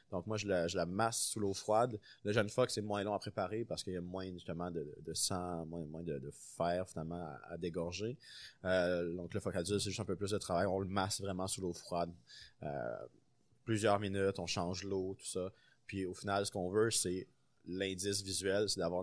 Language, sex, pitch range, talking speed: French, male, 85-105 Hz, 235 wpm